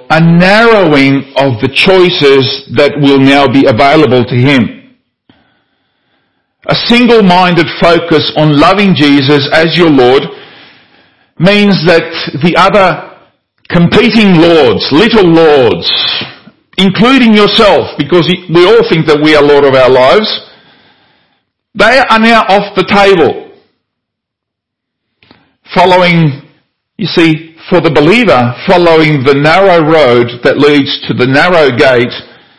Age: 50-69